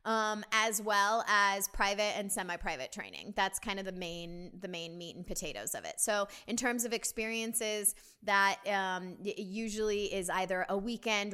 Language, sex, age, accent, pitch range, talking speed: English, female, 20-39, American, 185-225 Hz, 170 wpm